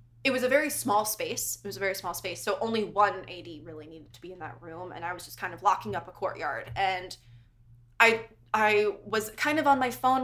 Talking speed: 245 wpm